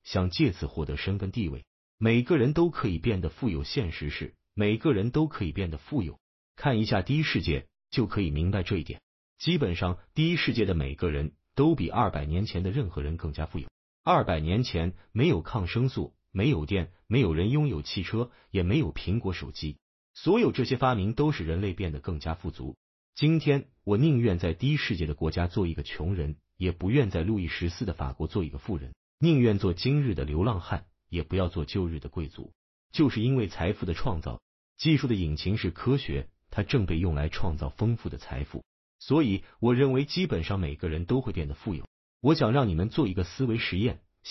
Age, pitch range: 30-49, 80-120 Hz